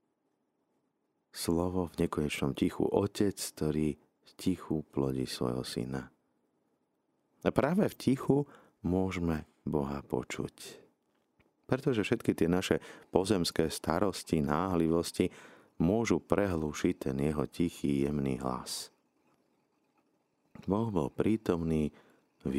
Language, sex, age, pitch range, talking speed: Slovak, male, 50-69, 70-85 Hz, 95 wpm